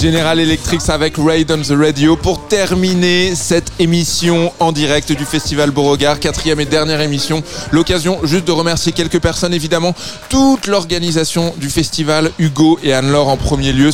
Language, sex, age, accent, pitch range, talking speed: French, male, 20-39, French, 145-175 Hz, 160 wpm